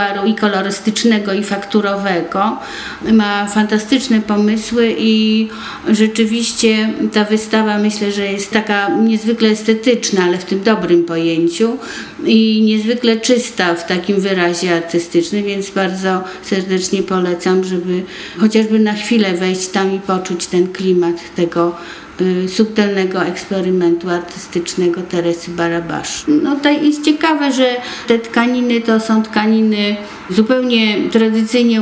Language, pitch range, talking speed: Polish, 180-220 Hz, 115 wpm